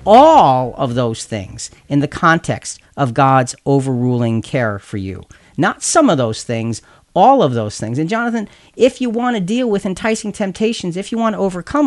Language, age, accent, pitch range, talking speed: English, 40-59, American, 120-175 Hz, 185 wpm